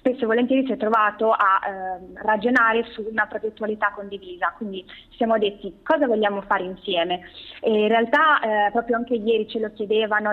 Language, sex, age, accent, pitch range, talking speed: Italian, female, 20-39, native, 200-240 Hz, 175 wpm